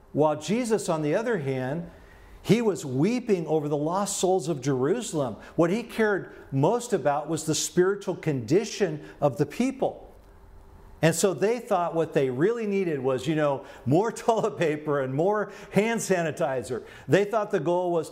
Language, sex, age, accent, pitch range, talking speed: English, male, 50-69, American, 150-210 Hz, 165 wpm